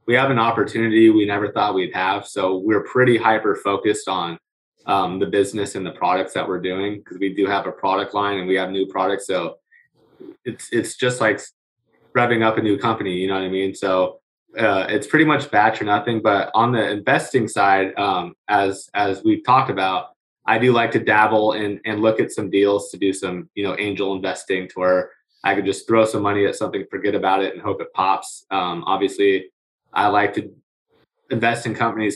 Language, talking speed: English, 210 wpm